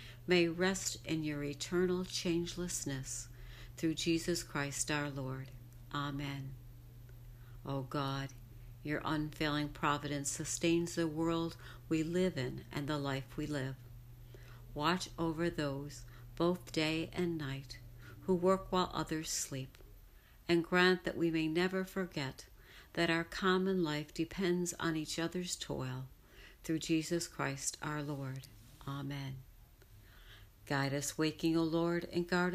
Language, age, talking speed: English, 60-79, 125 wpm